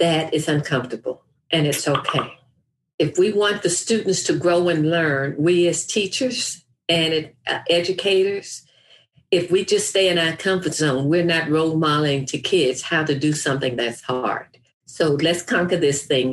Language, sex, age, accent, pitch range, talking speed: English, female, 50-69, American, 140-175 Hz, 165 wpm